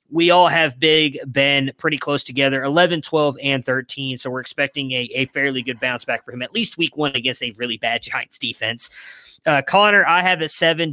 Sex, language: male, English